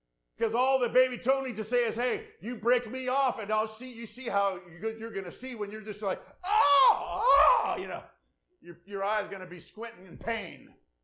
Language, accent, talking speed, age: English, American, 225 wpm, 50-69